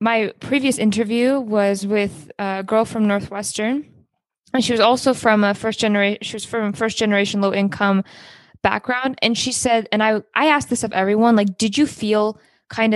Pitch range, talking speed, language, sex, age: 200-225 Hz, 185 wpm, English, female, 20-39